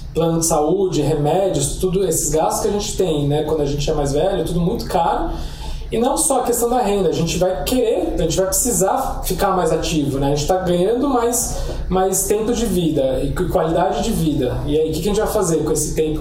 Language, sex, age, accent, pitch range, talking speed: Portuguese, male, 20-39, Brazilian, 155-195 Hz, 235 wpm